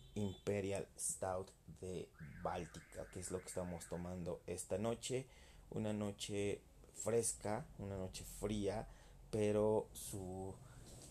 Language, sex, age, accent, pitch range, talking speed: Spanish, male, 30-49, Mexican, 95-115 Hz, 110 wpm